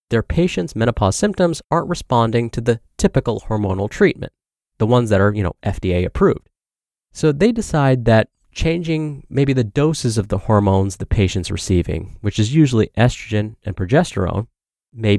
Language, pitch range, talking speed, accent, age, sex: English, 105-150 Hz, 160 wpm, American, 30-49, male